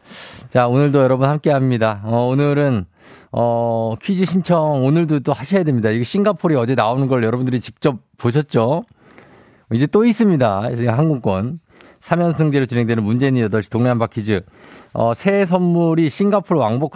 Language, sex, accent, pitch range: Korean, male, native, 110-150 Hz